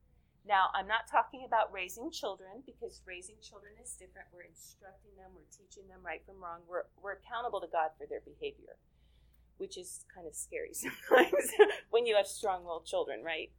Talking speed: 180 wpm